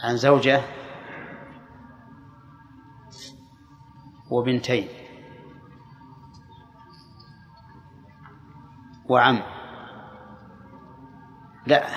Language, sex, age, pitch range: Arabic, male, 30-49, 130-145 Hz